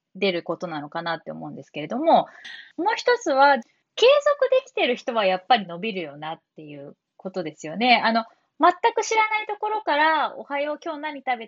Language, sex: Japanese, female